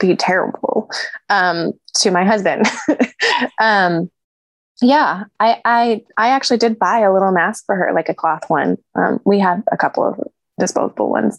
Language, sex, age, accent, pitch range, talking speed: English, female, 20-39, American, 175-260 Hz, 165 wpm